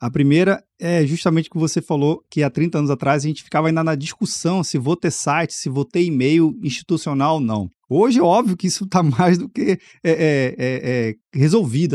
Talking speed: 220 wpm